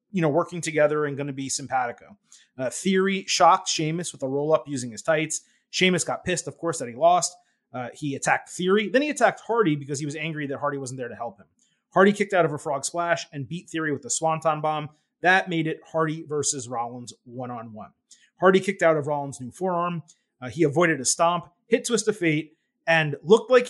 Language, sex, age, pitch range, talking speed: English, male, 30-49, 145-195 Hz, 225 wpm